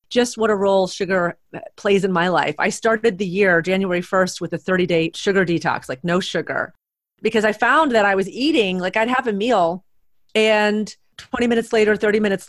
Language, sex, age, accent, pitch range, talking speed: English, female, 30-49, American, 185-230 Hz, 200 wpm